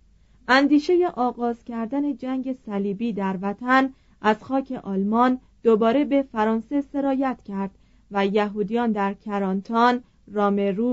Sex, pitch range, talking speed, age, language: female, 205-260 Hz, 110 wpm, 40-59, Persian